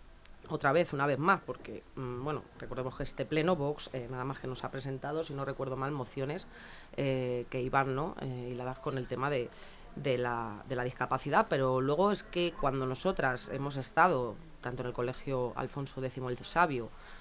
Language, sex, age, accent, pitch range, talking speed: Spanish, female, 30-49, Spanish, 125-150 Hz, 190 wpm